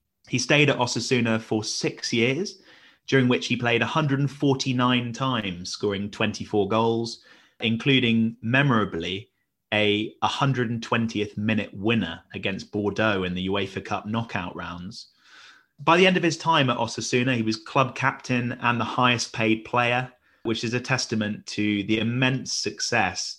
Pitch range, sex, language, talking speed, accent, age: 105-125 Hz, male, English, 135 wpm, British, 30-49